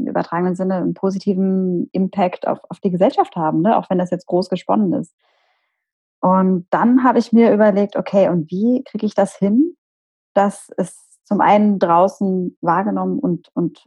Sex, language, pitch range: female, German, 185-235 Hz